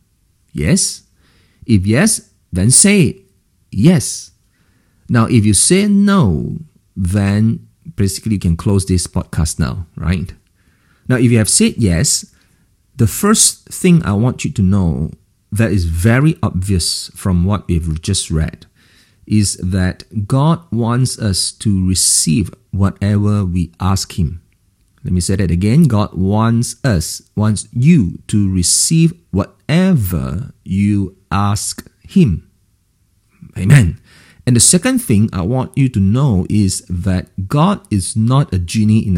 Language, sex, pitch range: English, male, 90-120 Hz